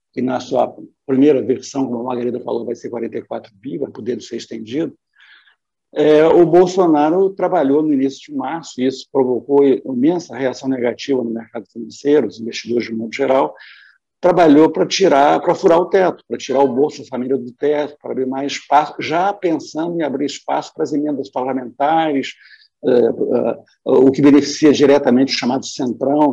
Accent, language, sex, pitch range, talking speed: Brazilian, Portuguese, male, 130-175 Hz, 165 wpm